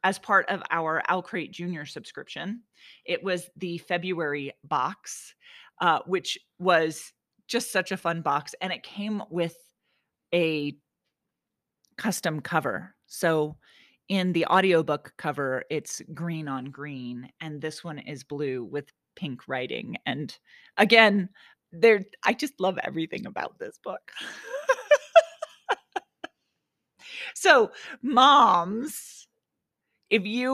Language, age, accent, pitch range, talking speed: English, 30-49, American, 155-225 Hz, 110 wpm